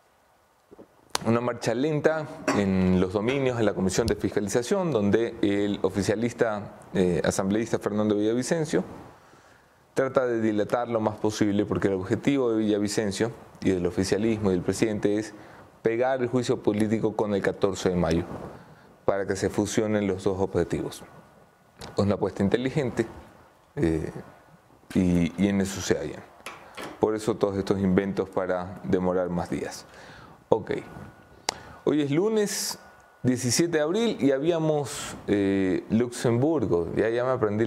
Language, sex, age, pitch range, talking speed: English, male, 30-49, 100-120 Hz, 140 wpm